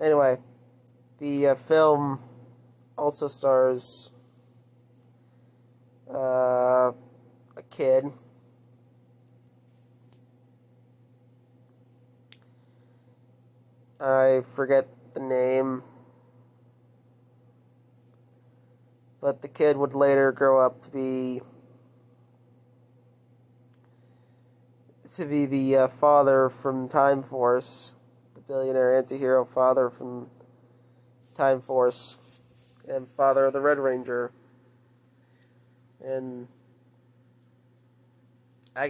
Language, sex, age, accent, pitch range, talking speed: English, male, 30-49, American, 125-130 Hz, 70 wpm